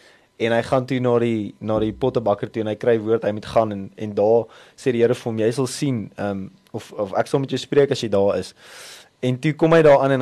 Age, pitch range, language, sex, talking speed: 20-39, 105-130 Hz, English, male, 265 wpm